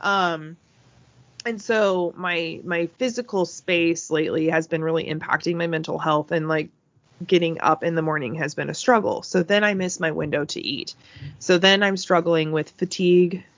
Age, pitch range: 20-39, 155-180 Hz